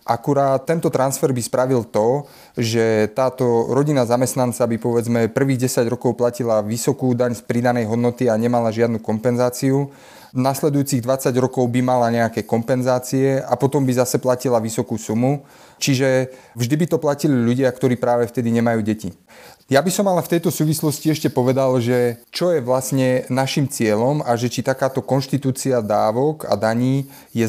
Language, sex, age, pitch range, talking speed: Slovak, male, 30-49, 115-135 Hz, 165 wpm